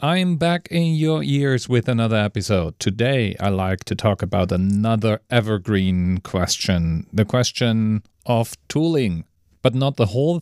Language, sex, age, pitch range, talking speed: English, male, 40-59, 100-130 Hz, 145 wpm